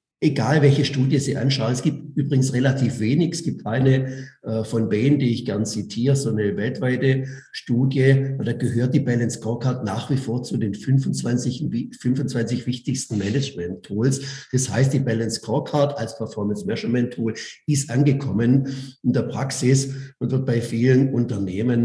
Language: German